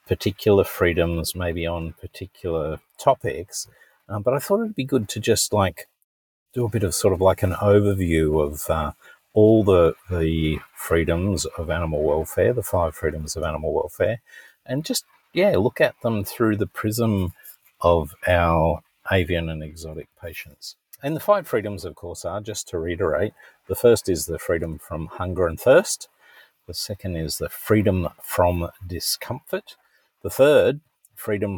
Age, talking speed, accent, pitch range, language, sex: 50-69, 160 wpm, Australian, 85-115 Hz, English, male